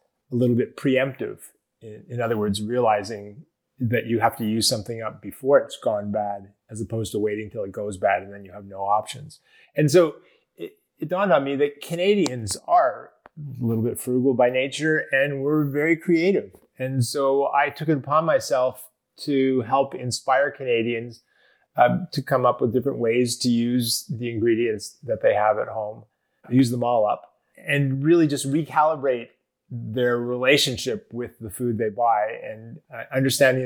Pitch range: 115-140 Hz